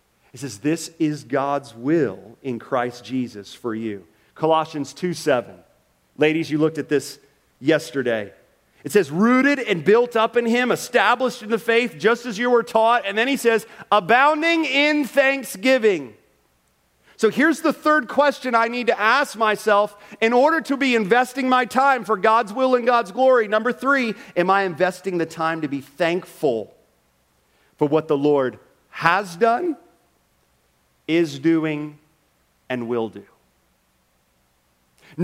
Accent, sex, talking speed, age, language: American, male, 150 wpm, 40-59, English